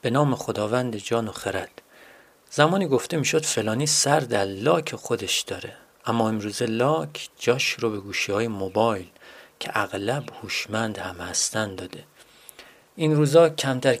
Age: 40-59